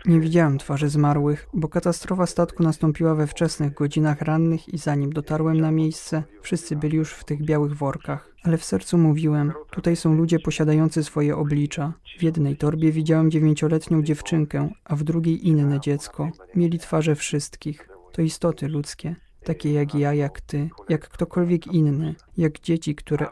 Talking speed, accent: 160 wpm, native